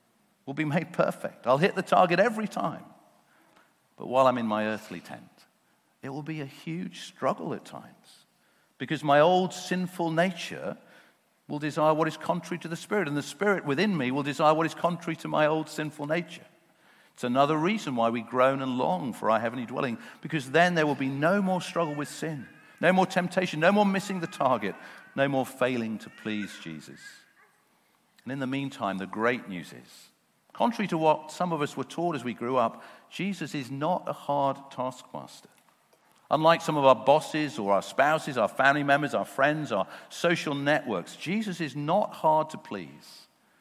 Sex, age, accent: male, 50-69, British